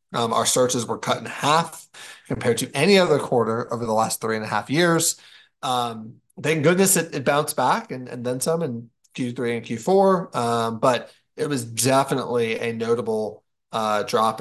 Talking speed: 185 wpm